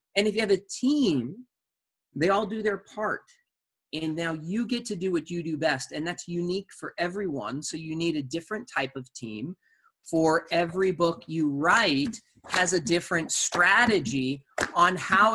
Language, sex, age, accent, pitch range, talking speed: English, male, 30-49, American, 165-245 Hz, 175 wpm